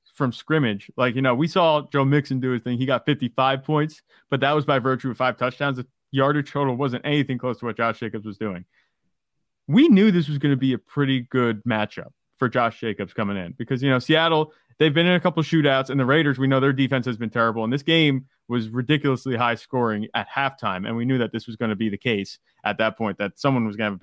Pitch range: 120-150 Hz